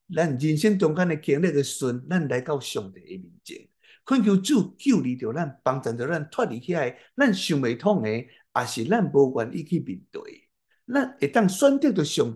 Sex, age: male, 60-79